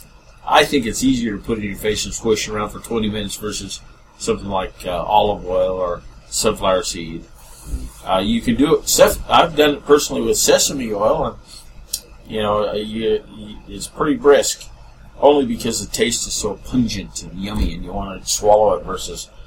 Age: 50-69